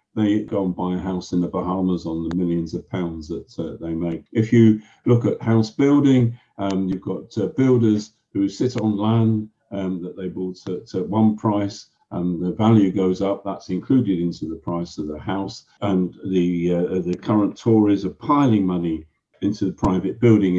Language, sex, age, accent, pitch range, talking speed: English, male, 50-69, British, 95-115 Hz, 190 wpm